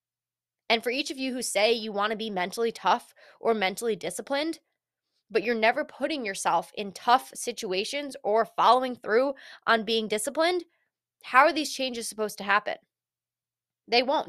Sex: female